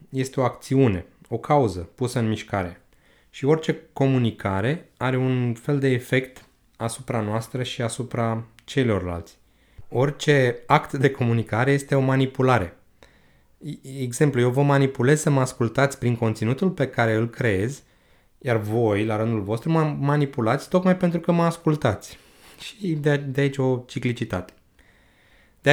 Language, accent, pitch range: Romanian, native, 110-140 Hz